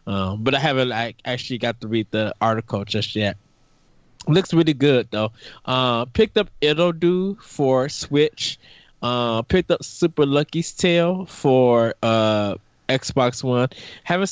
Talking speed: 145 wpm